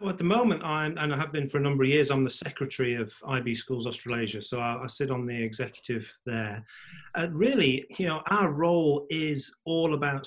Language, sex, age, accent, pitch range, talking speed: English, male, 40-59, British, 120-145 Hz, 220 wpm